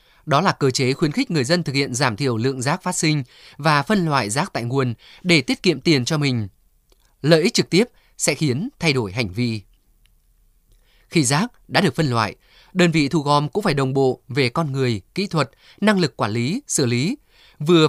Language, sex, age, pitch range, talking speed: Vietnamese, male, 20-39, 130-170 Hz, 215 wpm